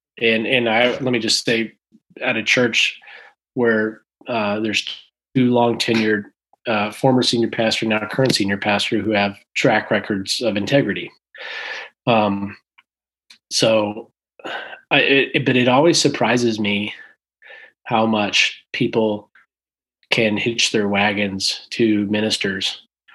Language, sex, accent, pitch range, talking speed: English, male, American, 105-125 Hz, 125 wpm